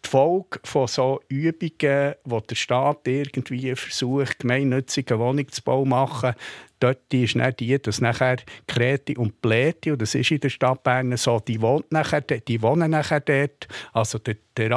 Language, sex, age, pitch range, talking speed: German, male, 50-69, 115-140 Hz, 170 wpm